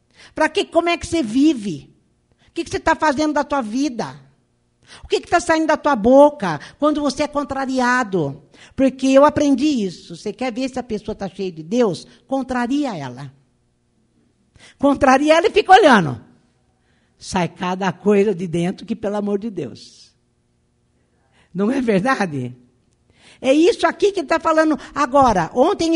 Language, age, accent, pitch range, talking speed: Portuguese, 50-69, Brazilian, 185-290 Hz, 160 wpm